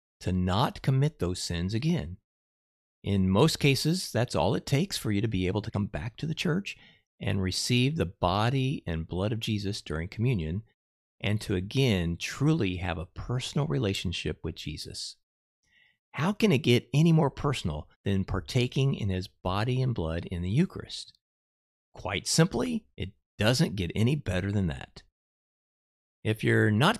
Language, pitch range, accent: English, 90-125 Hz, American